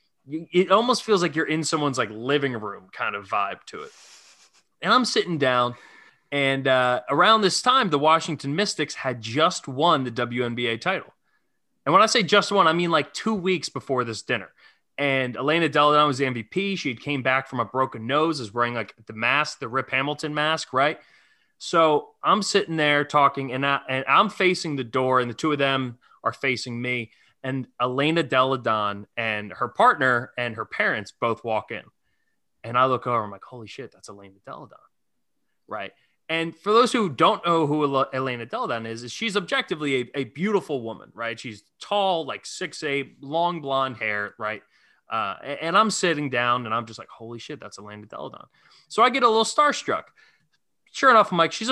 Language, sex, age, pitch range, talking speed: English, male, 20-39, 120-175 Hz, 195 wpm